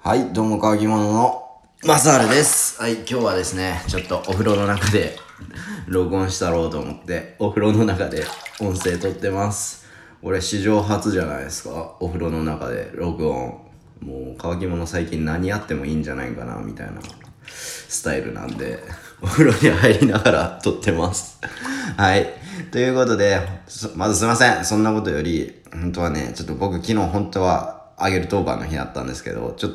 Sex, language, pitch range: male, Japanese, 80-105 Hz